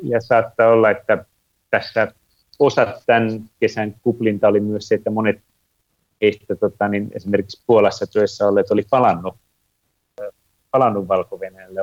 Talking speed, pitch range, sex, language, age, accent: 125 wpm, 105-125 Hz, male, Finnish, 30-49, native